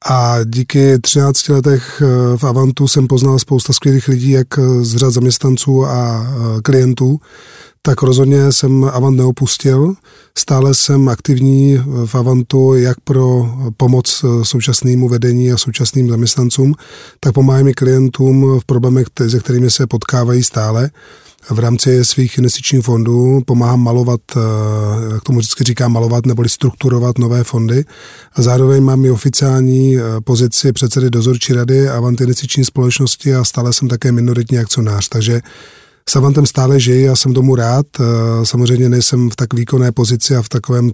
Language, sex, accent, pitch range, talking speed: Czech, male, native, 120-135 Hz, 140 wpm